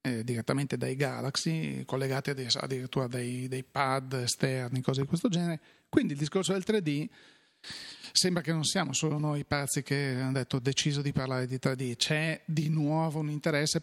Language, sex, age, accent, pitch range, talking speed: Italian, male, 40-59, native, 125-150 Hz, 175 wpm